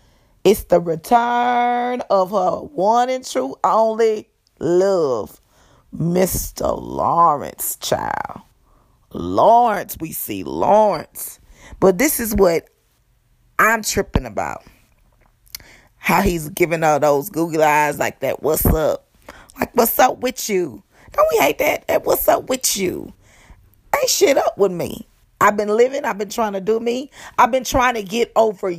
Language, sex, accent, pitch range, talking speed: English, female, American, 185-250 Hz, 145 wpm